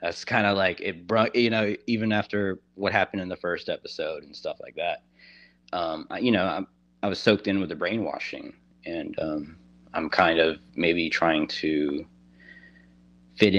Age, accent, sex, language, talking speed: 30-49, American, male, English, 180 wpm